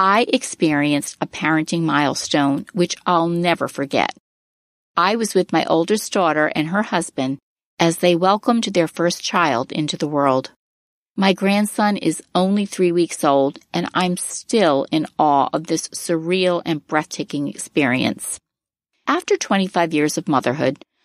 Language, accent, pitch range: English, American, 155-200 Hz